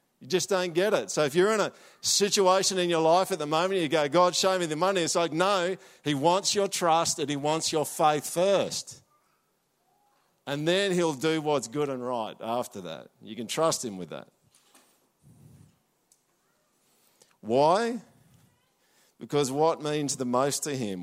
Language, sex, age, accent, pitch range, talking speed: English, male, 50-69, Australian, 105-160 Hz, 170 wpm